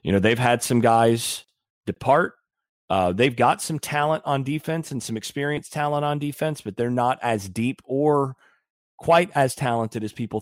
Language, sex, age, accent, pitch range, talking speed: English, male, 30-49, American, 110-140 Hz, 180 wpm